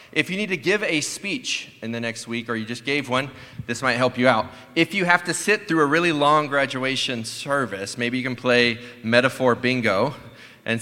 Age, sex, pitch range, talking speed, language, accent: 30-49, male, 115-145 Hz, 215 wpm, English, American